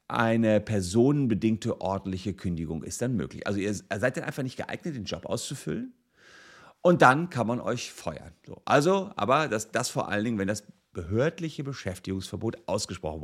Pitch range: 95-125 Hz